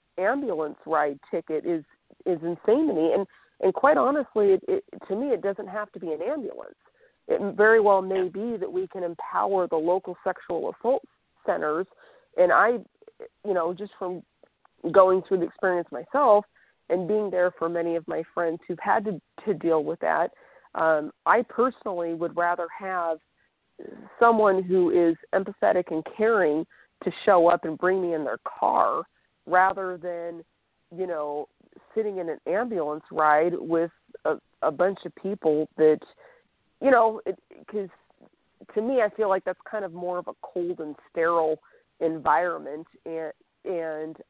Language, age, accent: English, 40-59, American